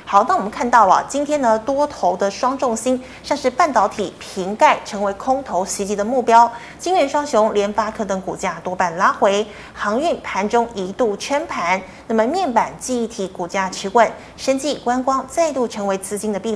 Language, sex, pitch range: Chinese, female, 200-270 Hz